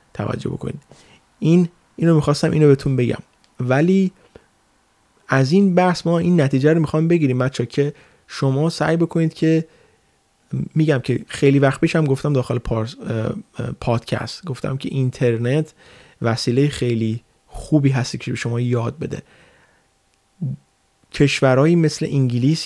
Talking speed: 125 wpm